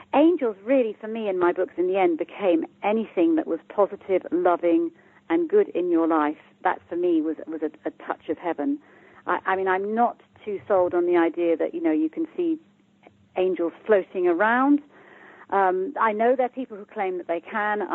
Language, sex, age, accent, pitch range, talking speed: English, female, 40-59, British, 175-240 Hz, 205 wpm